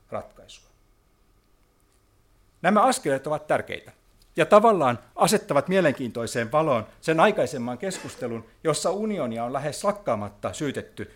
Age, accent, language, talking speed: 60-79, native, Finnish, 100 wpm